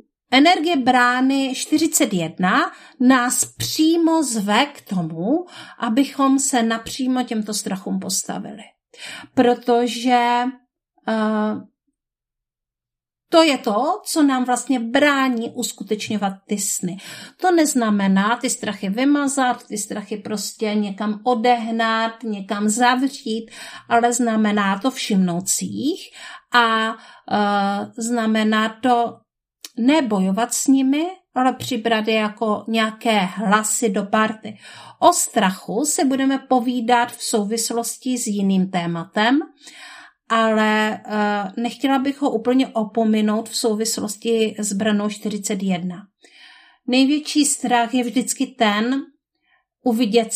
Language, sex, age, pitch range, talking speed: Czech, female, 50-69, 210-260 Hz, 100 wpm